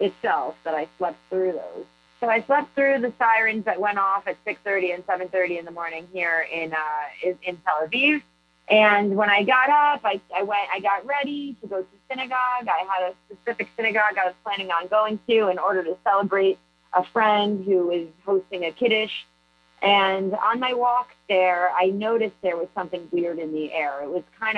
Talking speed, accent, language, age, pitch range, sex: 200 wpm, American, English, 30-49, 175-220 Hz, female